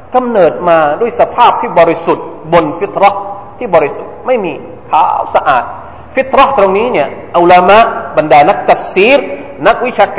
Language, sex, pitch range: Thai, male, 165-255 Hz